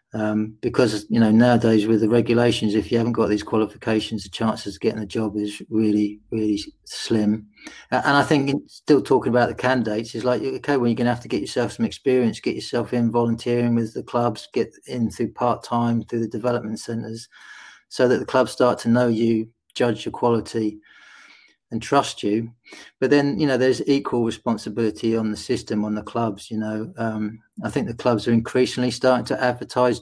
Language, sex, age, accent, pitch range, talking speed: English, male, 30-49, British, 110-120 Hz, 200 wpm